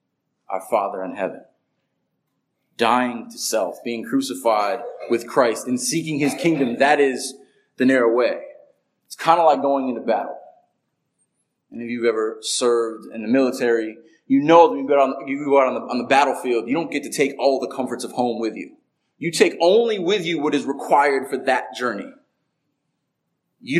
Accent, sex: American, male